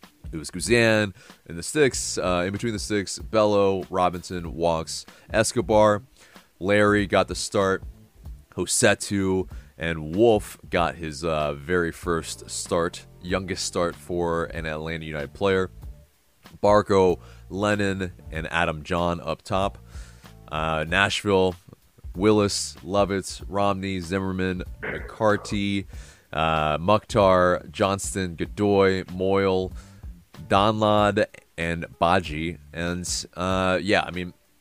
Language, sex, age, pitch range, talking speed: English, male, 30-49, 80-100 Hz, 105 wpm